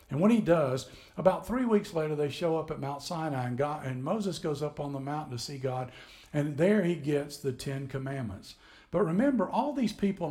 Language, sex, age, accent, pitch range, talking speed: English, male, 60-79, American, 135-185 Hz, 220 wpm